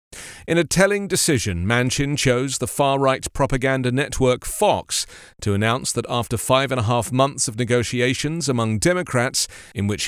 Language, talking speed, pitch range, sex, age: English, 155 wpm, 115-155 Hz, male, 40-59